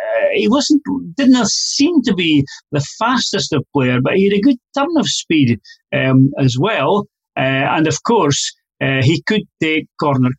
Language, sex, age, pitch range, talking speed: English, male, 40-59, 140-215 Hz, 175 wpm